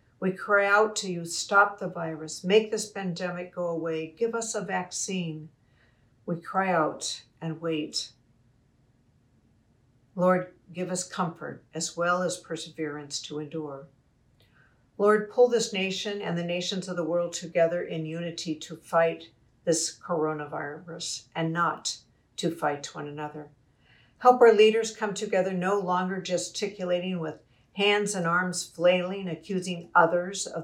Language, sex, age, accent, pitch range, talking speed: English, female, 60-79, American, 150-185 Hz, 140 wpm